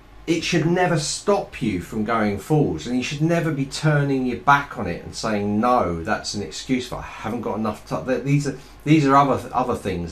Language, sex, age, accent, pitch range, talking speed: English, male, 40-59, British, 95-135 Hz, 220 wpm